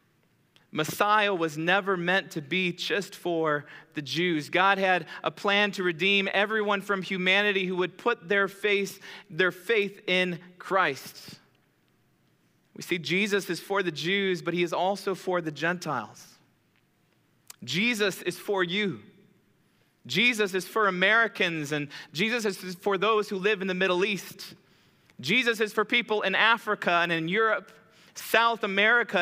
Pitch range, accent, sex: 180-215 Hz, American, male